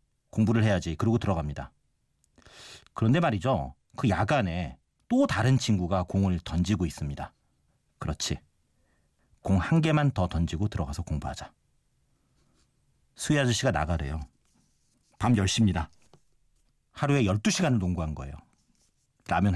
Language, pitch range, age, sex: Korean, 90-130 Hz, 40-59, male